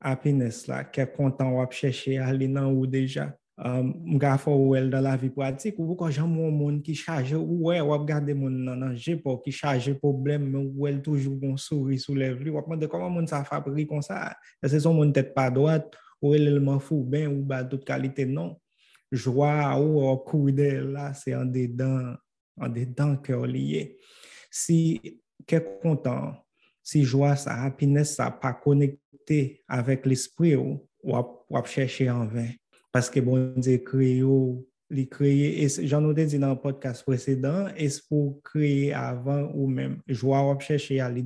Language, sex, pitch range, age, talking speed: English, male, 130-150 Hz, 20-39, 175 wpm